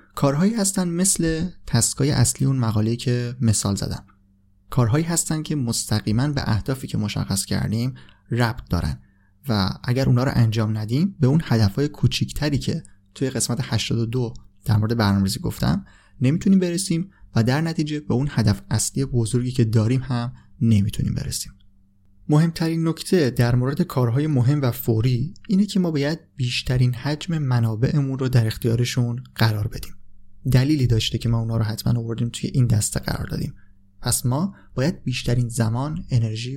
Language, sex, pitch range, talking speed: Persian, male, 110-140 Hz, 155 wpm